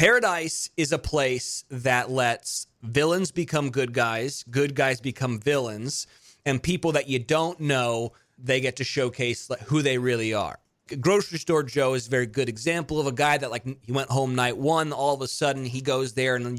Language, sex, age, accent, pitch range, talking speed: English, male, 30-49, American, 125-160 Hz, 195 wpm